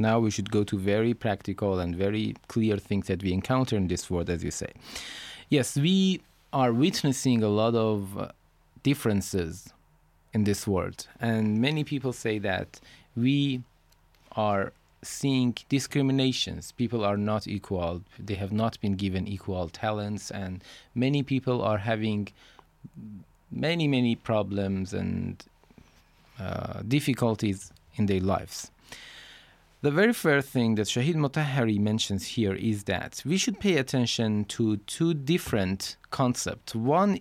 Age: 20-39